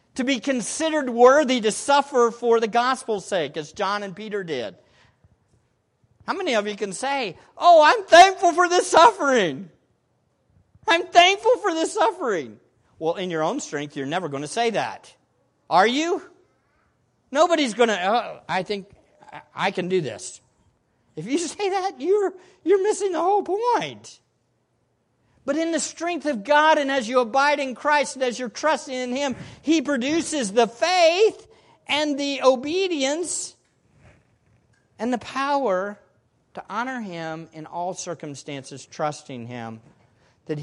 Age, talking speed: 50-69, 150 wpm